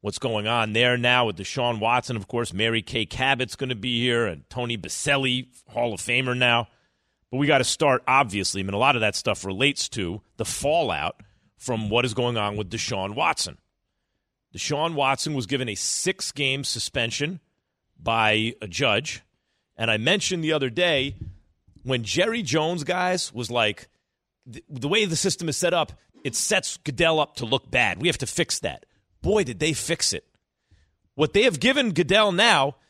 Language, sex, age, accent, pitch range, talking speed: English, male, 40-59, American, 120-190 Hz, 185 wpm